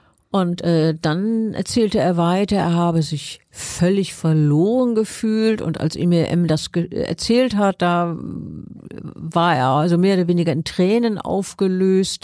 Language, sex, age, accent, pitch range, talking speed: German, female, 50-69, German, 170-200 Hz, 145 wpm